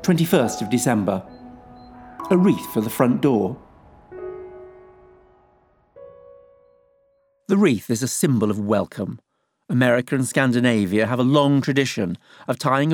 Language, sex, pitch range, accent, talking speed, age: English, male, 105-140 Hz, British, 115 wpm, 50-69